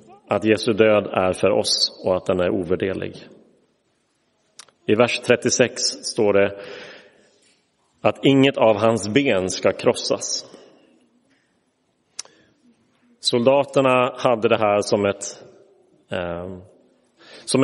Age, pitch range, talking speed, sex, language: 30-49, 105-130 Hz, 95 wpm, male, Swedish